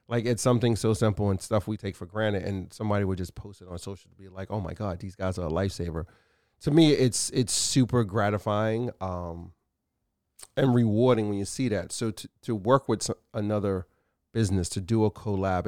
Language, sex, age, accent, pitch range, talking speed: English, male, 30-49, American, 95-115 Hz, 205 wpm